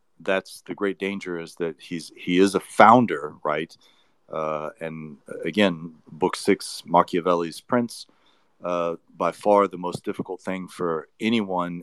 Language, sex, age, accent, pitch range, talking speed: English, male, 40-59, American, 85-105 Hz, 140 wpm